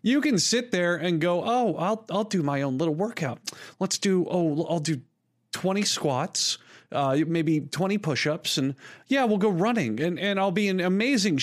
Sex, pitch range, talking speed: male, 135-185 Hz, 190 wpm